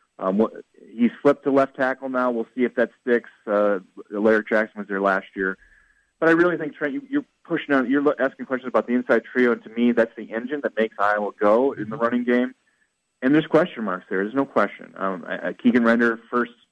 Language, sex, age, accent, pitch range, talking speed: English, male, 30-49, American, 105-135 Hz, 215 wpm